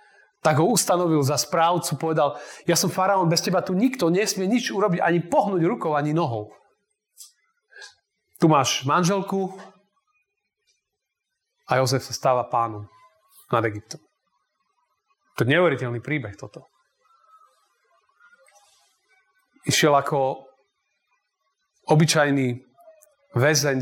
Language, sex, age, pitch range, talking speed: Slovak, male, 30-49, 125-205 Hz, 100 wpm